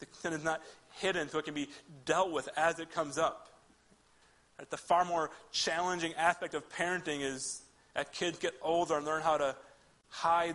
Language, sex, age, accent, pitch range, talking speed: English, male, 30-49, American, 130-160 Hz, 180 wpm